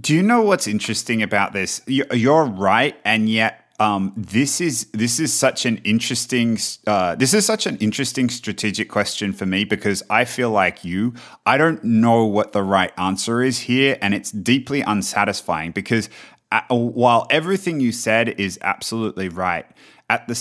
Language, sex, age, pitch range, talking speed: English, male, 30-49, 105-125 Hz, 170 wpm